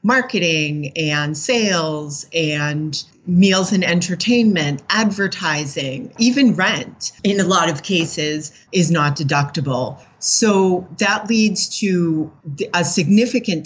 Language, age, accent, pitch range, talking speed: English, 40-59, American, 155-190 Hz, 105 wpm